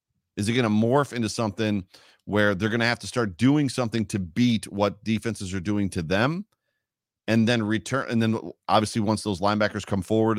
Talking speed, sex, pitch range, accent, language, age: 190 wpm, male, 100-130 Hz, American, English, 40-59